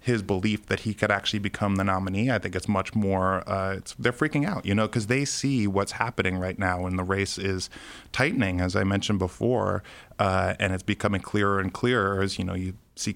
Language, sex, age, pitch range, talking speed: English, male, 20-39, 95-110 Hz, 220 wpm